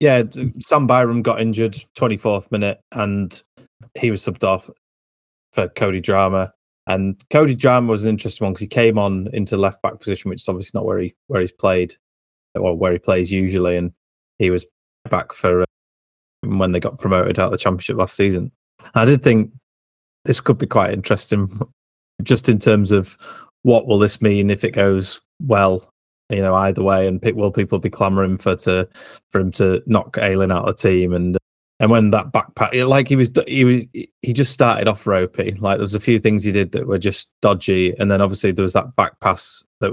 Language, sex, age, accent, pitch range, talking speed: English, male, 20-39, British, 95-110 Hz, 205 wpm